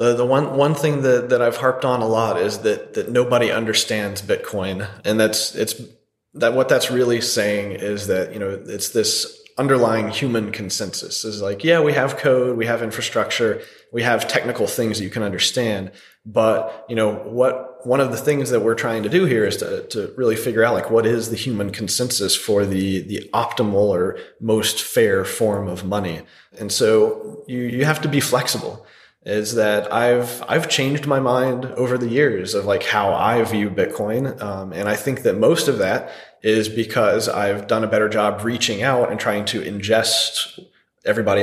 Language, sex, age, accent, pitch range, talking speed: English, male, 30-49, American, 105-140 Hz, 195 wpm